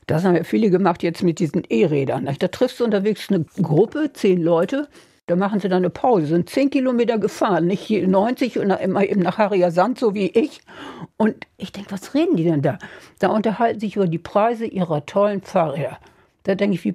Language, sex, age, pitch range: German, female, 60-79, 180-235 Hz